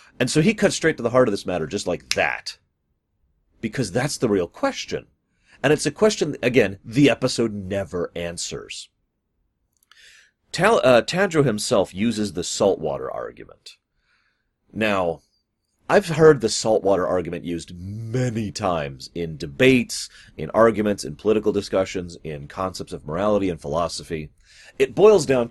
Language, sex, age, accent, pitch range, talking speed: English, male, 30-49, American, 95-140 Hz, 140 wpm